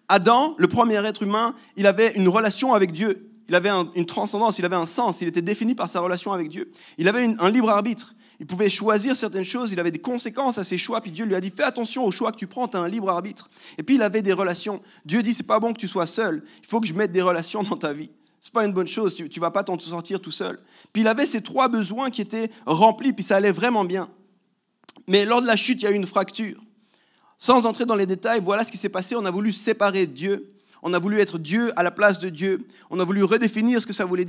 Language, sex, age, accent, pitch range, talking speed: French, male, 30-49, French, 185-225 Hz, 280 wpm